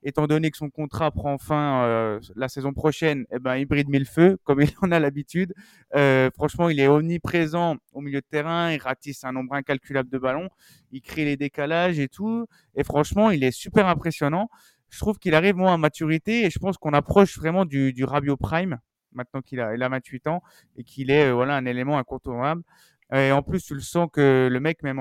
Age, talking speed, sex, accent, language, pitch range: 30-49, 225 wpm, male, French, French, 130-160 Hz